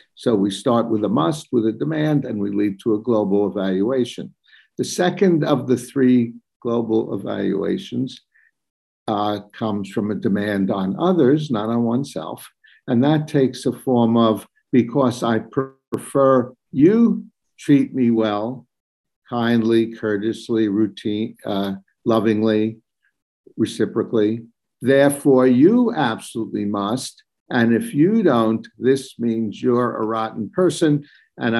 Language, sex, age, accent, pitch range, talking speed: English, male, 60-79, American, 105-130 Hz, 125 wpm